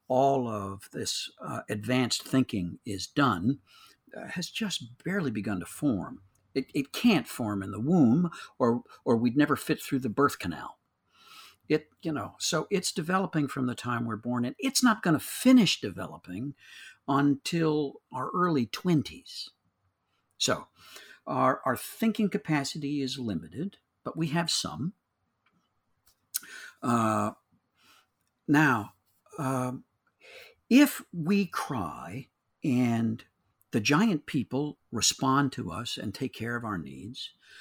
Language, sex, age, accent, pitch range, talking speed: English, male, 60-79, American, 120-170 Hz, 130 wpm